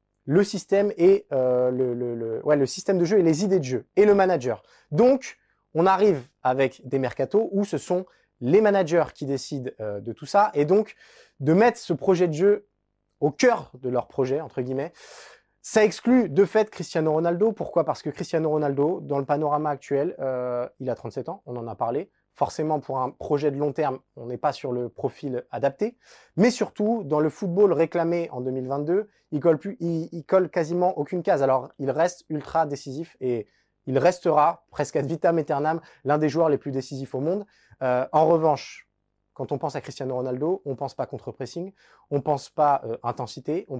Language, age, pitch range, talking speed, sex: French, 20-39, 135-180 Hz, 195 wpm, male